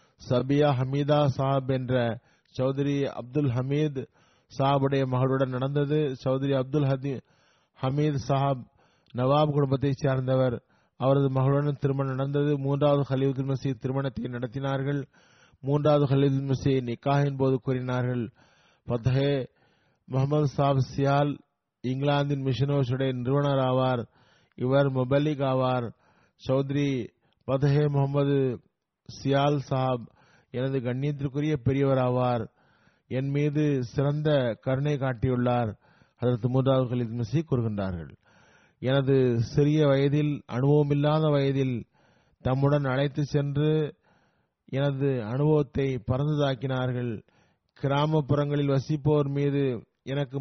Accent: native